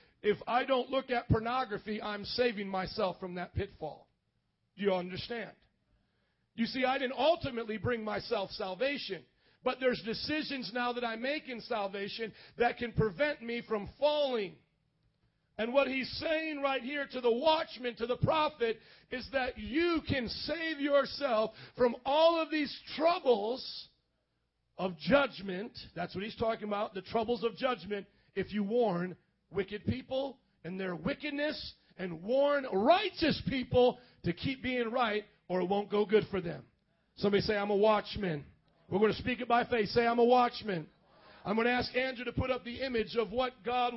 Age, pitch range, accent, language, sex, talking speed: 40-59, 200-255 Hz, American, English, male, 170 wpm